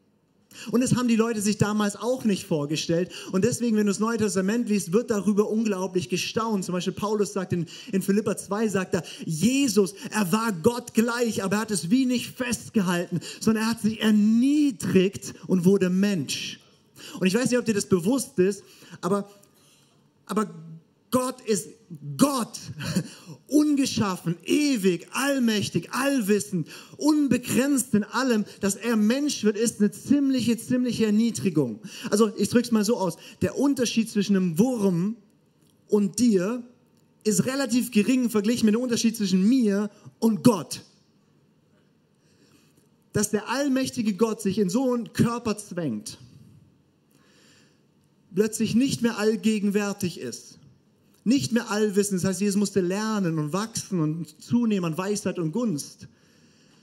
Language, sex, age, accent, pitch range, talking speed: German, male, 40-59, German, 185-230 Hz, 145 wpm